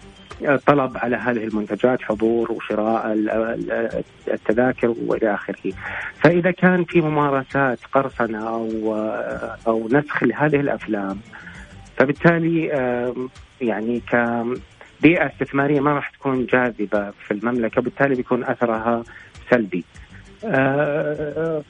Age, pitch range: 30-49, 110-135 Hz